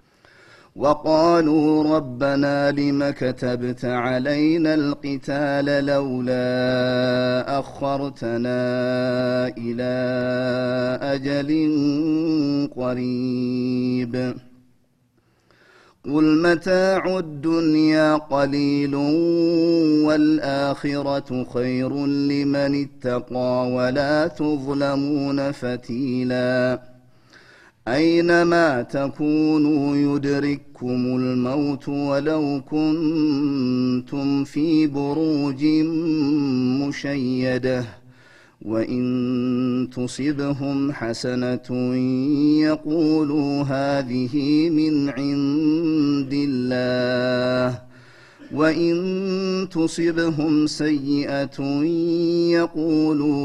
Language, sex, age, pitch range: Amharic, male, 30-49, 125-155 Hz